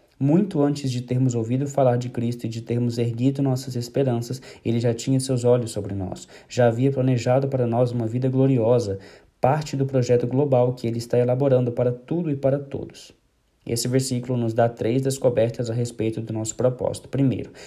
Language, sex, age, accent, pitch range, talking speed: Portuguese, male, 20-39, Brazilian, 120-135 Hz, 185 wpm